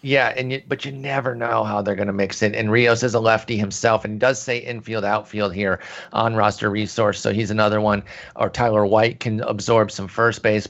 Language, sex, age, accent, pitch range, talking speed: English, male, 30-49, American, 105-130 Hz, 225 wpm